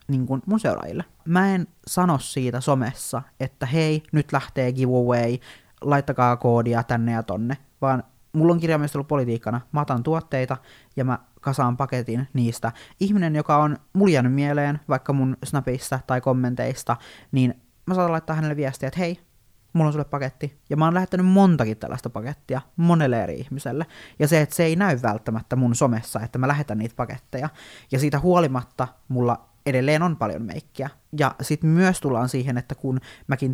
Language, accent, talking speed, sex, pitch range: Finnish, native, 165 wpm, male, 120-145 Hz